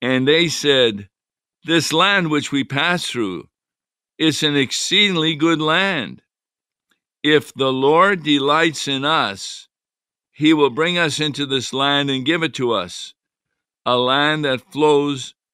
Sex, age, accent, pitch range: male, 50-69, American, 120-145 Hz